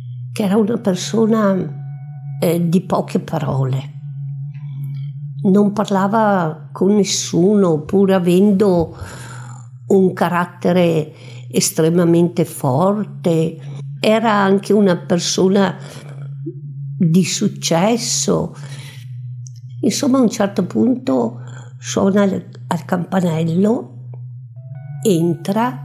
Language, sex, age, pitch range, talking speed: Italian, female, 50-69, 135-190 Hz, 80 wpm